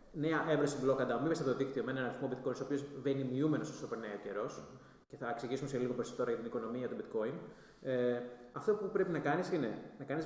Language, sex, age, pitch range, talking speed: Greek, male, 20-39, 135-180 Hz, 235 wpm